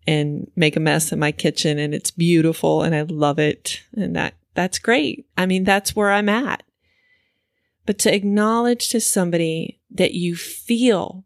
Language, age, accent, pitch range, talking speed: English, 30-49, American, 160-205 Hz, 170 wpm